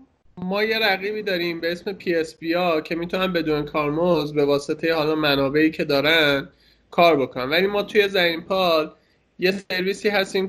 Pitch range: 155-190 Hz